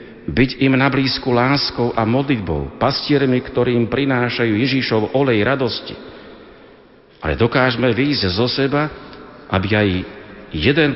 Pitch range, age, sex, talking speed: 90-130 Hz, 60-79, male, 110 wpm